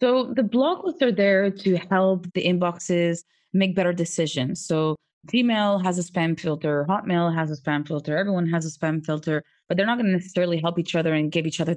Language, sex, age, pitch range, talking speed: English, female, 20-39, 155-190 Hz, 215 wpm